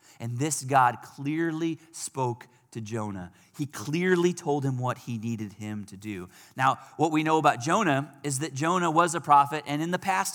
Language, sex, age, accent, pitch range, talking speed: English, male, 40-59, American, 135-190 Hz, 190 wpm